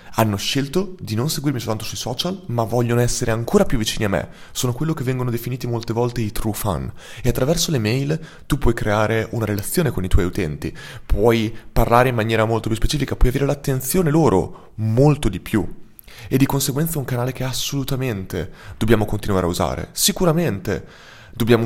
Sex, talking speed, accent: male, 185 wpm, native